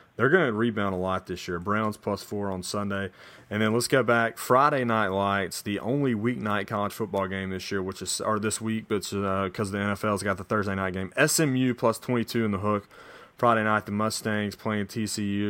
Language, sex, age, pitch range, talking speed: English, male, 30-49, 100-120 Hz, 215 wpm